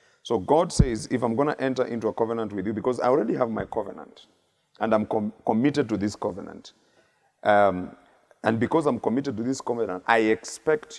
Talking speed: 190 wpm